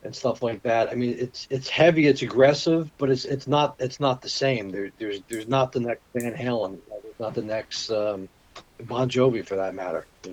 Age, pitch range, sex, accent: 40-59, 120-150 Hz, male, American